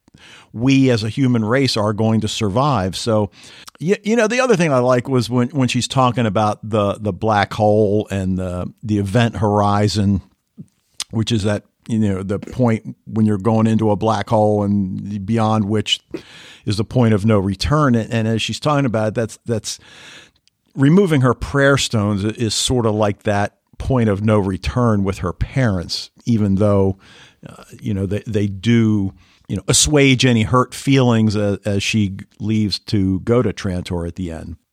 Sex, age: male, 50-69